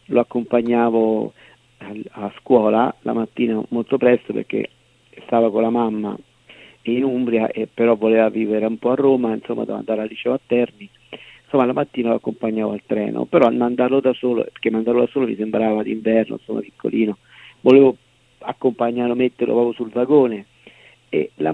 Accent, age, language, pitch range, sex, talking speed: native, 50-69, Italian, 110-120 Hz, male, 165 wpm